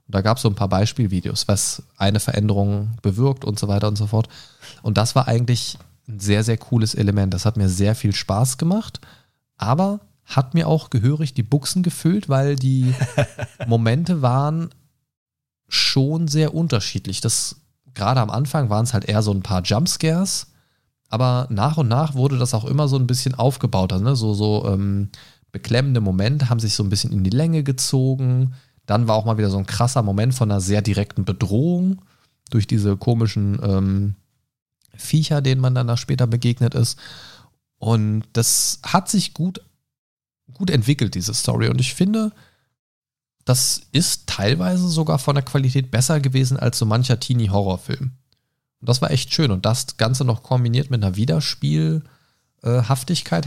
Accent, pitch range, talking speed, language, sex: German, 110-140 Hz, 170 wpm, German, male